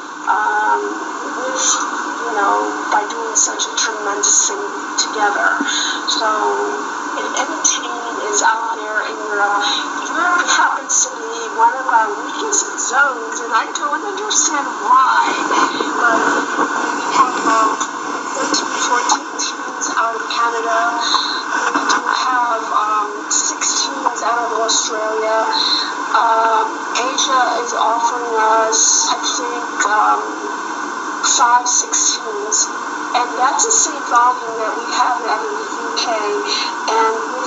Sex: female